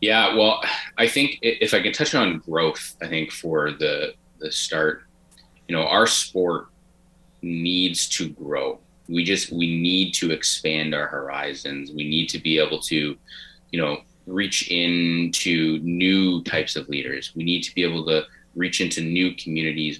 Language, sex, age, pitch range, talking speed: English, male, 30-49, 75-85 Hz, 165 wpm